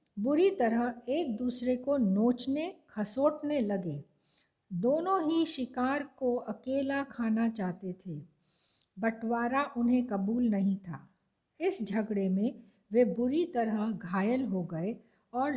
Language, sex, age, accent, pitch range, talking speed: Hindi, female, 60-79, native, 200-260 Hz, 120 wpm